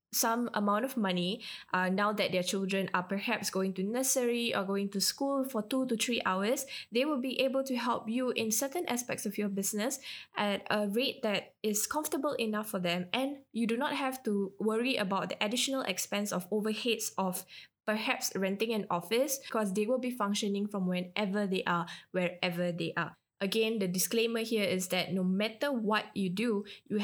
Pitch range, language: 190-230 Hz, English